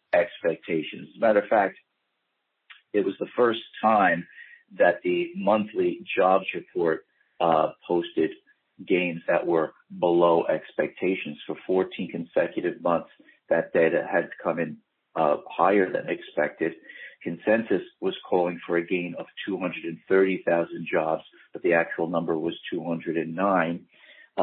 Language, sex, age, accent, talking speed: English, male, 50-69, American, 125 wpm